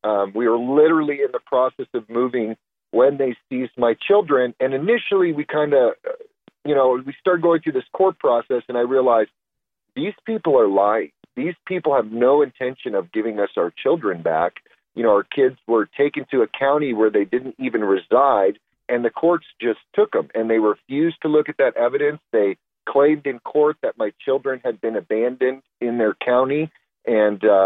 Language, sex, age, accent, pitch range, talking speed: English, male, 40-59, American, 115-180 Hz, 190 wpm